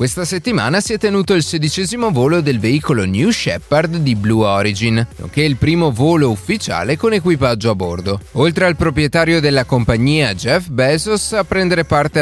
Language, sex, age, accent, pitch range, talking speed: Italian, male, 30-49, native, 110-170 Hz, 165 wpm